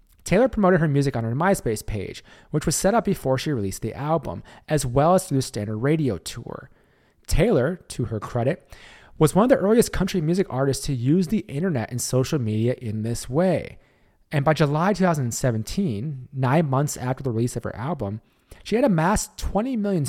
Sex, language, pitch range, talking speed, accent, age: male, English, 120-165 Hz, 190 wpm, American, 30-49